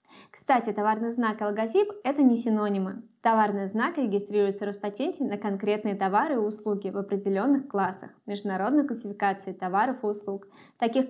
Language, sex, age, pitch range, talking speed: Russian, female, 20-39, 205-255 Hz, 145 wpm